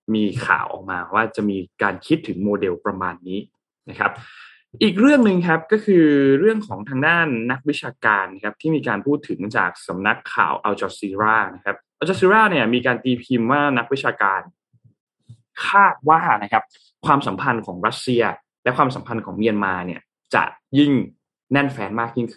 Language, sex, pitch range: Thai, male, 105-145 Hz